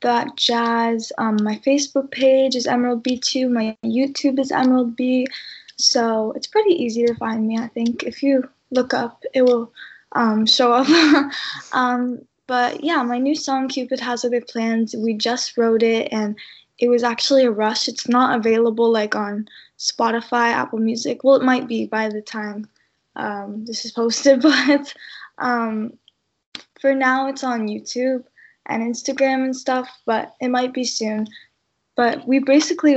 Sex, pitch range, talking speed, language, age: female, 225-255 Hz, 165 wpm, English, 10-29